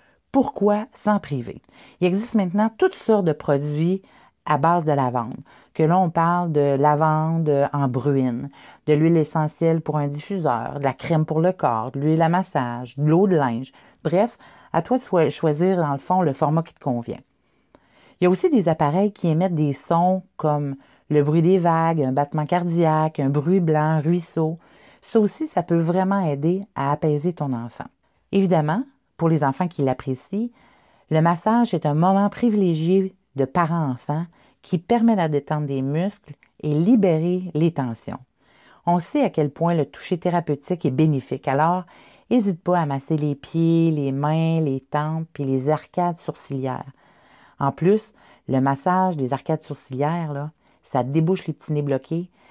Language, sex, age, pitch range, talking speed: French, female, 40-59, 145-180 Hz, 170 wpm